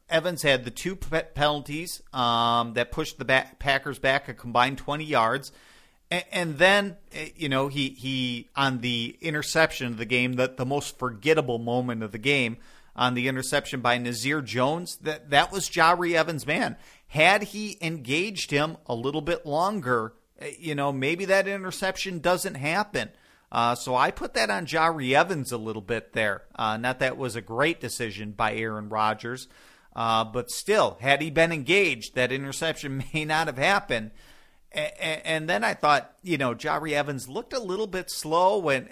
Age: 40-59